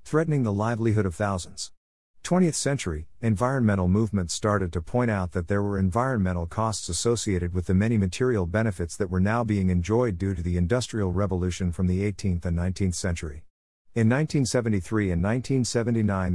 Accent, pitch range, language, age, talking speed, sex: American, 90-115 Hz, English, 50-69, 160 wpm, male